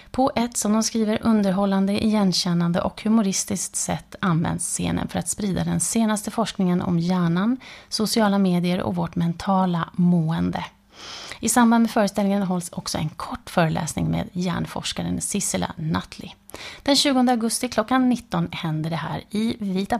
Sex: female